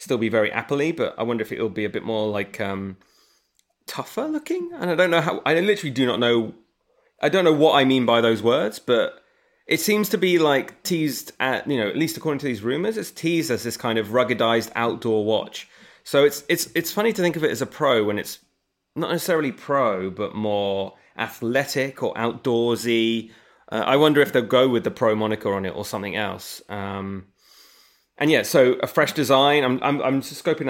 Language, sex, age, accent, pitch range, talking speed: English, male, 30-49, British, 110-145 Hz, 215 wpm